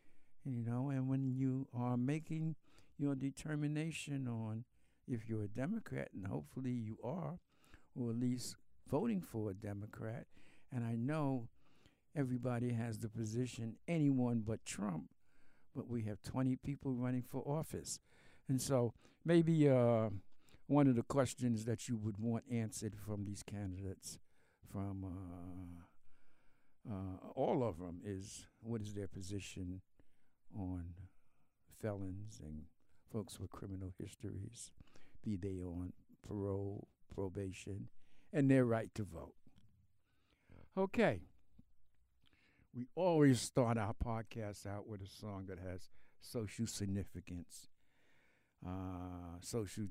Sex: male